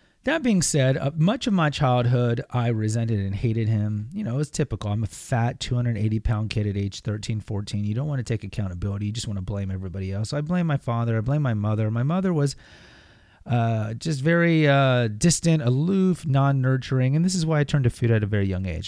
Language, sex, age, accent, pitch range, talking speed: English, male, 30-49, American, 105-140 Hz, 225 wpm